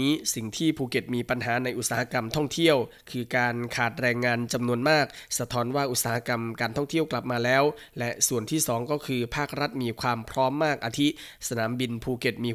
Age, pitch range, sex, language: 20-39, 120-140 Hz, male, Thai